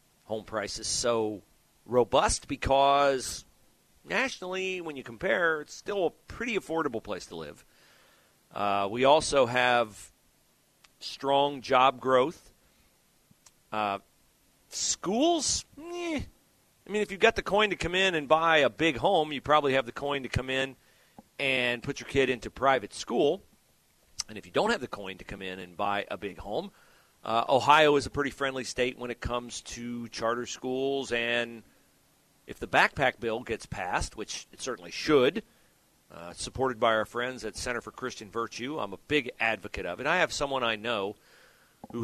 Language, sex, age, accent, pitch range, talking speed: English, male, 40-59, American, 115-145 Hz, 170 wpm